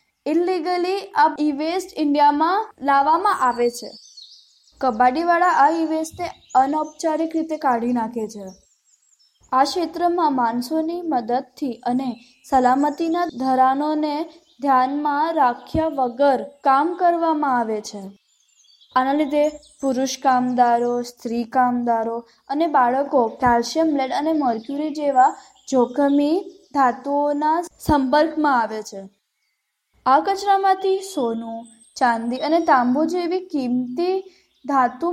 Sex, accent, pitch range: female, native, 255-325 Hz